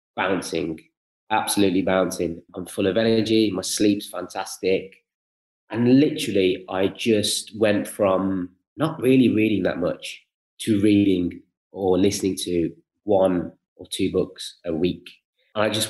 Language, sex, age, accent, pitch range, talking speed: English, male, 20-39, British, 95-110 Hz, 130 wpm